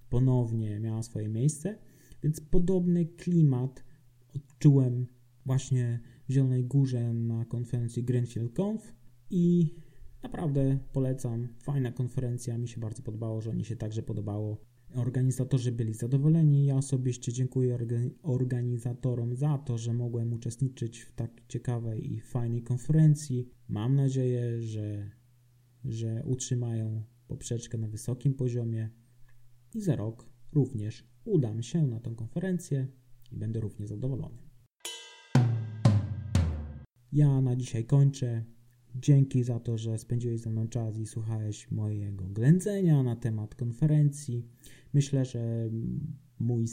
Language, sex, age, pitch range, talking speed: Polish, male, 20-39, 115-135 Hz, 120 wpm